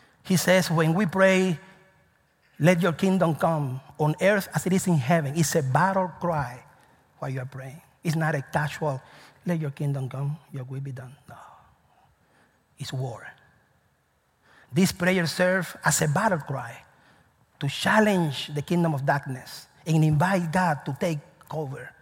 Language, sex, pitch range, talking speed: English, male, 140-185 Hz, 155 wpm